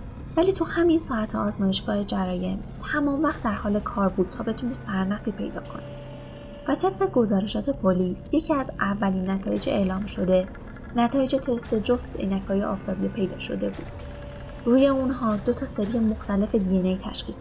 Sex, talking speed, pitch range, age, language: female, 150 wpm, 185-250 Hz, 20-39, Persian